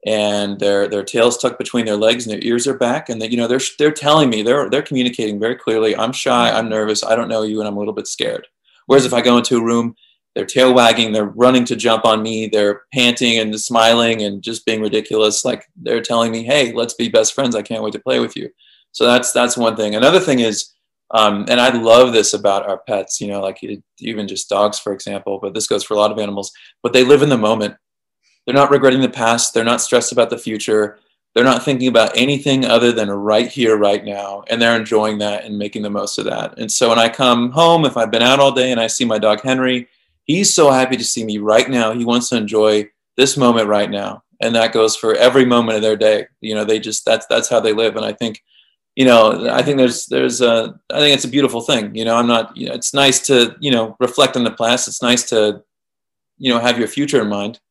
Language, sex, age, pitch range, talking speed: English, male, 20-39, 110-125 Hz, 255 wpm